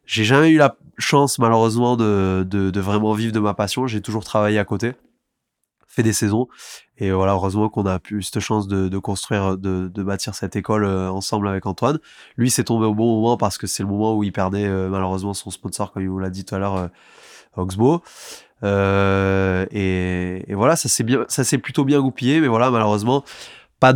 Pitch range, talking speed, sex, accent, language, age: 100-120 Hz, 210 wpm, male, French, French, 20-39